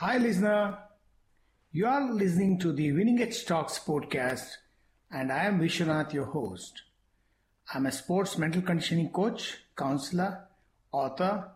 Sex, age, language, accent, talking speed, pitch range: male, 60-79, English, Indian, 135 wpm, 150-220 Hz